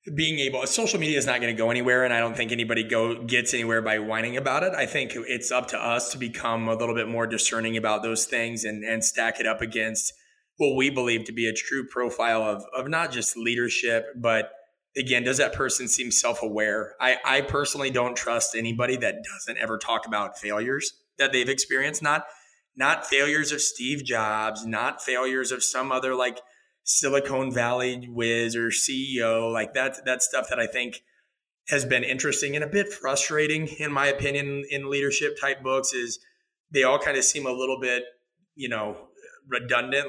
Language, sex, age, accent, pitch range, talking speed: English, male, 20-39, American, 115-140 Hz, 195 wpm